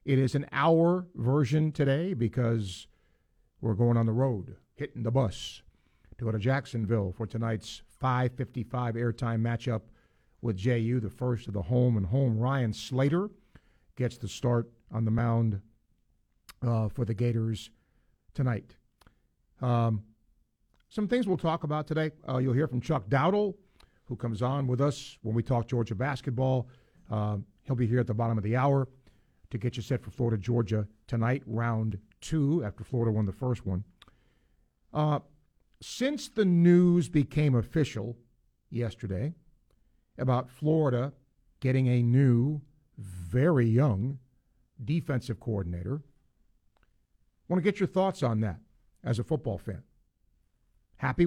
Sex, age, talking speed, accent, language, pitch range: male, 50-69, 145 wpm, American, English, 110-140 Hz